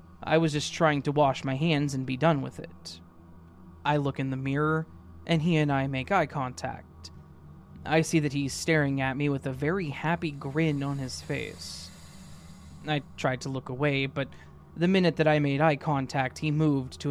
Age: 20-39